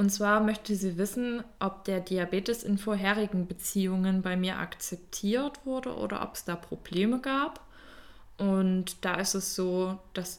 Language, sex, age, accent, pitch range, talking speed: German, female, 20-39, German, 170-190 Hz, 155 wpm